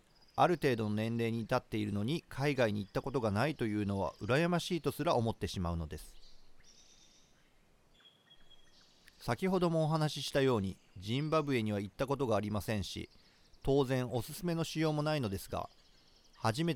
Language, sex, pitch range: Japanese, male, 105-135 Hz